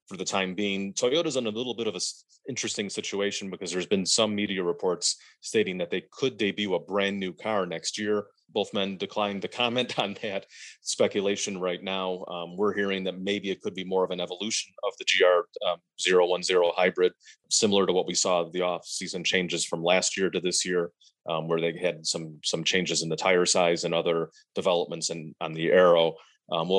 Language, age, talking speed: English, 30-49, 205 wpm